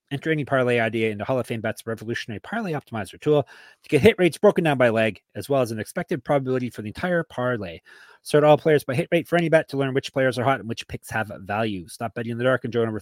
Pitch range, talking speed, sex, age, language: 115-150 Hz, 270 wpm, male, 30-49, English